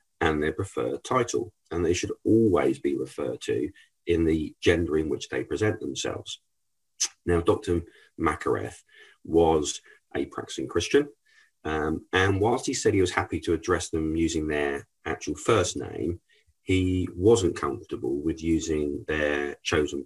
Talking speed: 145 wpm